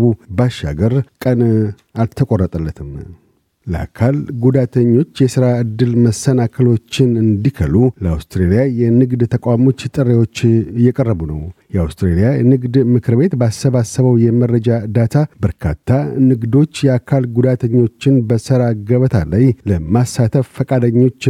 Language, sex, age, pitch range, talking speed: Amharic, male, 50-69, 110-130 Hz, 85 wpm